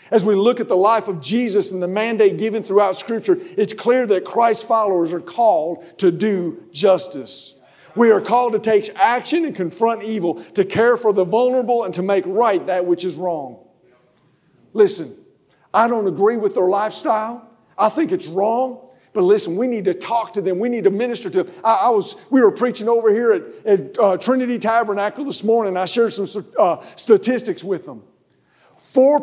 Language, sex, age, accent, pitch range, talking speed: English, male, 50-69, American, 200-265 Hz, 185 wpm